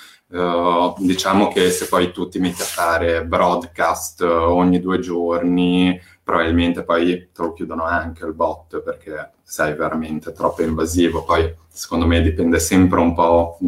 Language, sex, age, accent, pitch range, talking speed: Italian, male, 20-39, native, 85-90 Hz, 150 wpm